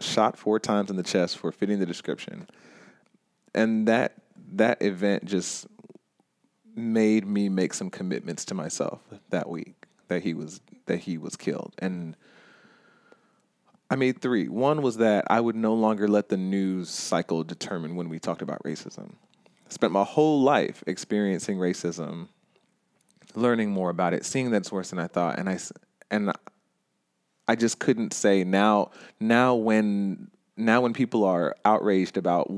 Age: 30-49